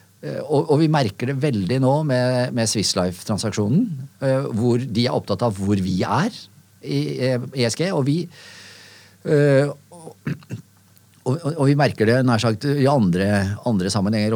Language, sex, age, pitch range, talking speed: English, male, 50-69, 105-140 Hz, 125 wpm